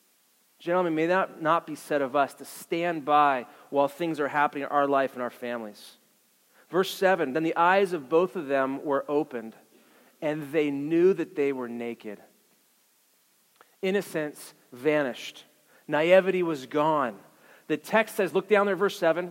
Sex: male